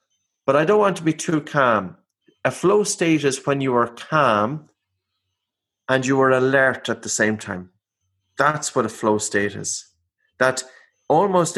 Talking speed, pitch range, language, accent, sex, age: 165 wpm, 120-150 Hz, English, Irish, male, 30-49